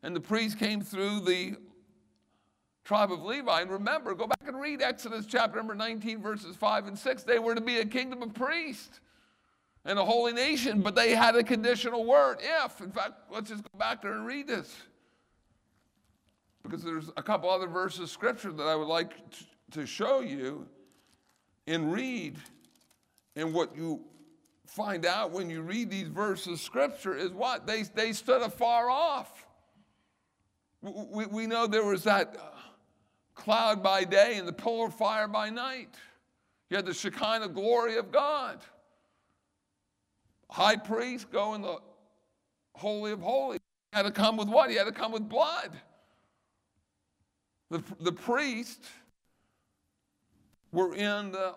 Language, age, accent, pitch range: English, 60-79, American, 175-235 Hz